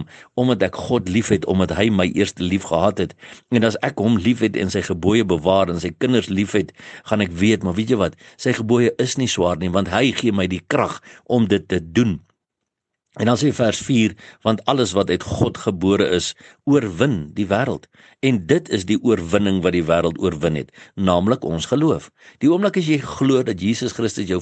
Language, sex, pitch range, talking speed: English, male, 90-115 Hz, 215 wpm